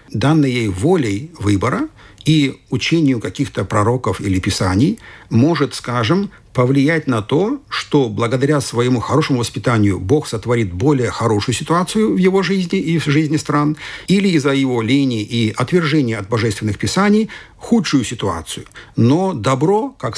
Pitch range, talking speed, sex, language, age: 110-160 Hz, 135 wpm, male, Russian, 50-69